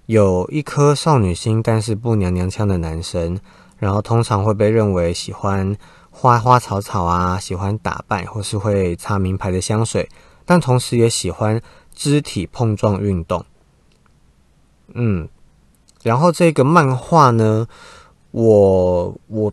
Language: Chinese